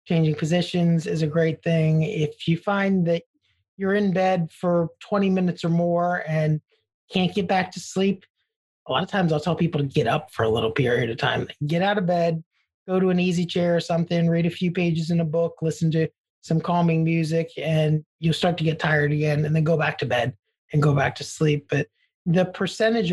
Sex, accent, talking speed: male, American, 220 wpm